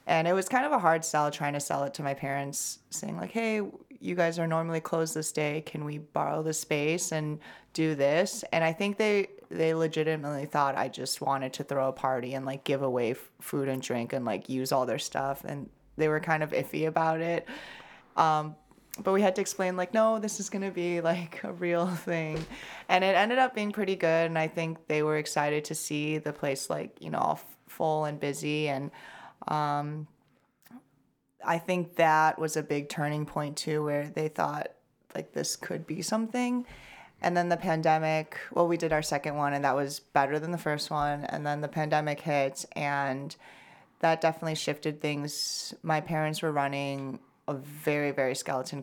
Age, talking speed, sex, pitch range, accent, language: 30-49, 205 wpm, female, 140-165 Hz, American, English